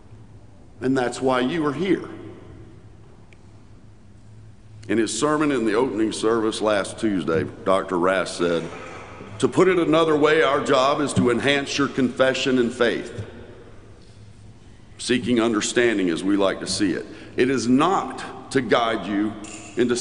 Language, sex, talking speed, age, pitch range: English, male, 140 wpm, 50-69, 105-115 Hz